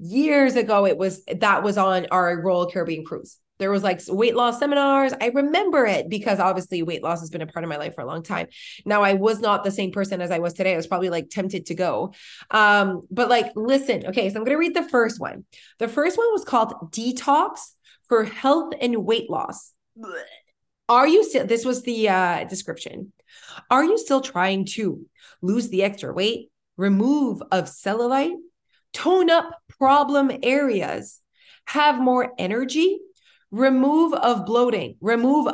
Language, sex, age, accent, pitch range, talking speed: English, female, 20-39, American, 190-275 Hz, 180 wpm